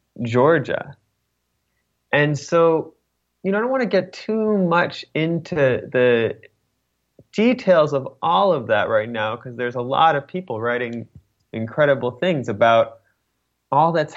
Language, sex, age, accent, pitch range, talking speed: English, male, 20-39, American, 100-140 Hz, 140 wpm